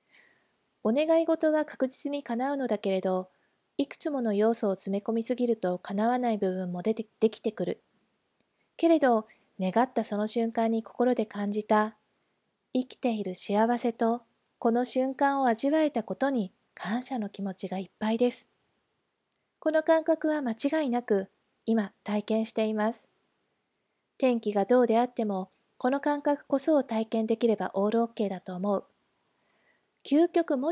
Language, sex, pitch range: Japanese, female, 205-260 Hz